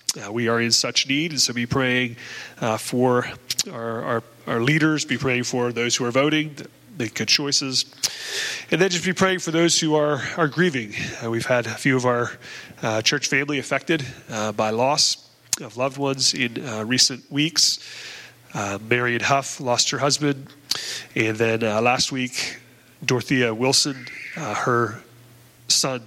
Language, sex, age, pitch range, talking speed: English, male, 30-49, 115-145 Hz, 175 wpm